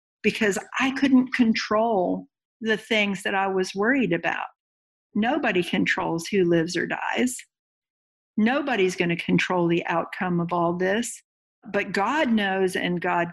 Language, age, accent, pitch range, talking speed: English, 50-69, American, 175-215 Hz, 135 wpm